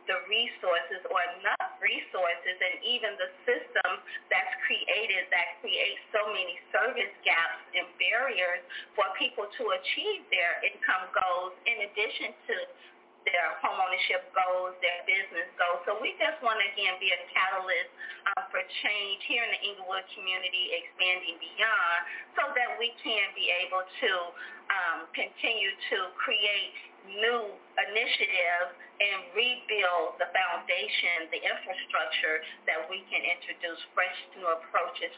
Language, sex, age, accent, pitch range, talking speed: English, female, 30-49, American, 175-235 Hz, 140 wpm